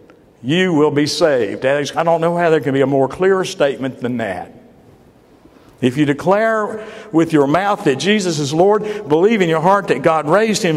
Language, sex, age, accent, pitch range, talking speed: English, male, 50-69, American, 135-185 Hz, 195 wpm